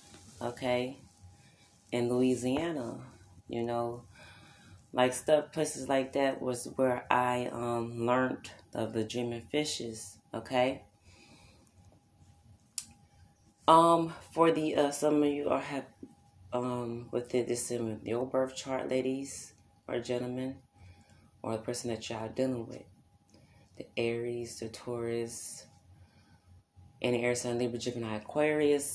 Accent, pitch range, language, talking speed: American, 105-130 Hz, English, 120 wpm